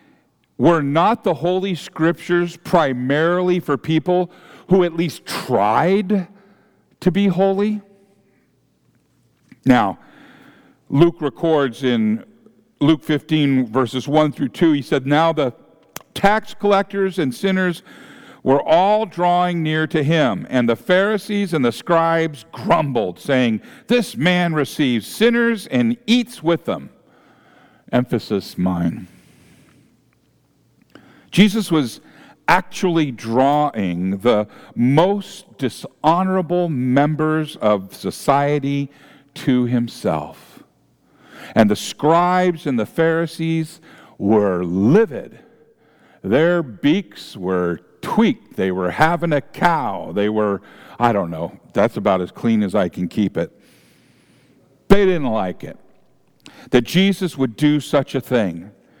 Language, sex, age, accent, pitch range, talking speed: English, male, 50-69, American, 130-185 Hz, 115 wpm